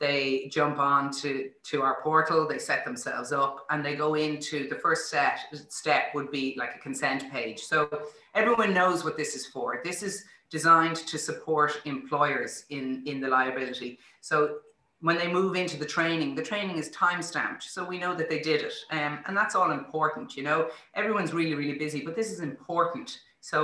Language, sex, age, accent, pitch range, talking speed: English, female, 30-49, Irish, 135-165 Hz, 195 wpm